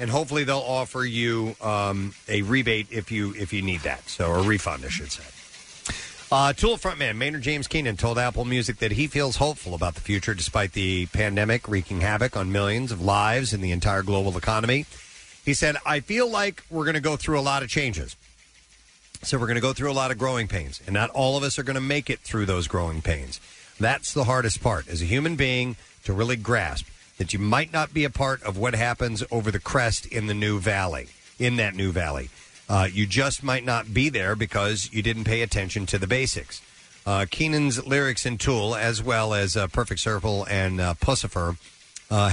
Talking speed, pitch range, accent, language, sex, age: 215 wpm, 95-130 Hz, American, English, male, 40-59